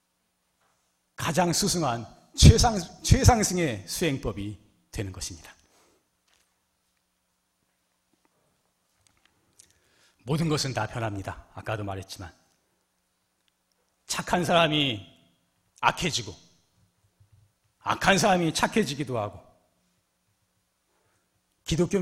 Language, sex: Korean, male